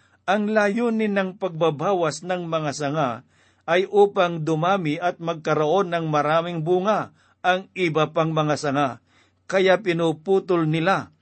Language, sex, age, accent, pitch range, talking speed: Filipino, male, 50-69, native, 145-185 Hz, 125 wpm